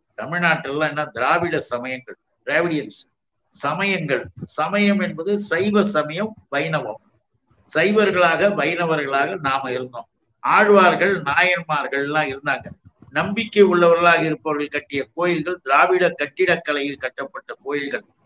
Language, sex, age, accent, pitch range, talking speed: Tamil, male, 60-79, native, 150-190 Hz, 90 wpm